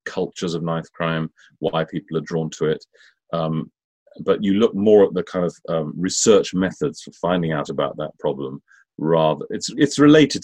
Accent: British